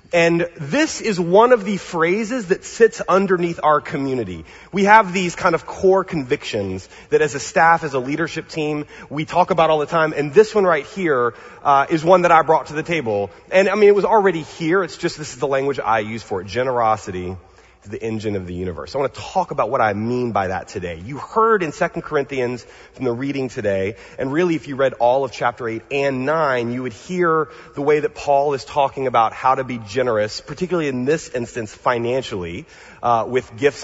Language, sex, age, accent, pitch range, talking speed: English, male, 30-49, American, 120-180 Hz, 220 wpm